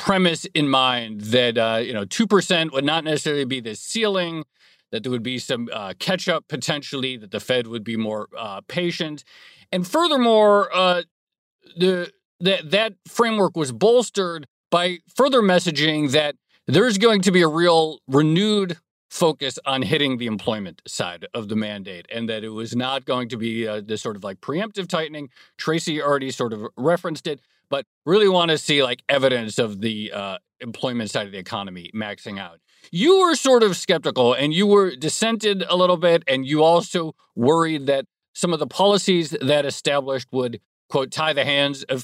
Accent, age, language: American, 40-59, English